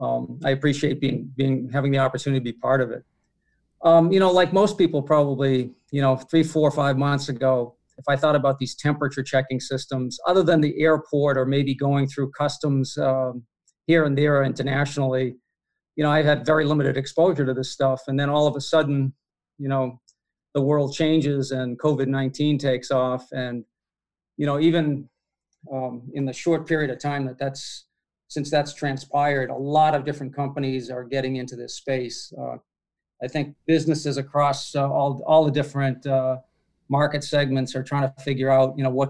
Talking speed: 185 wpm